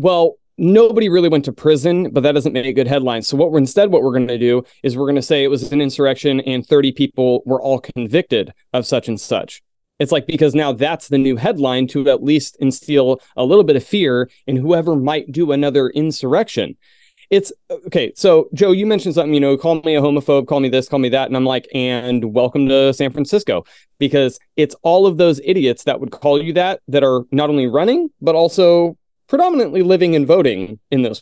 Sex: male